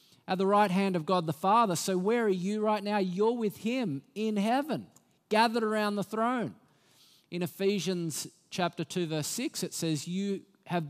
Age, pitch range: 50-69, 155-215 Hz